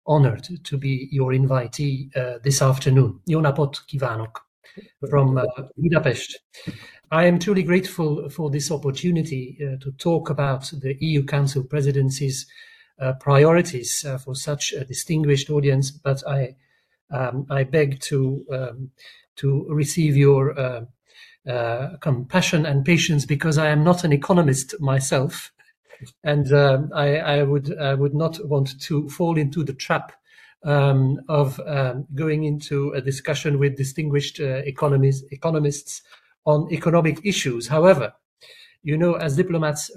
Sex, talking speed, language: male, 140 wpm, Hungarian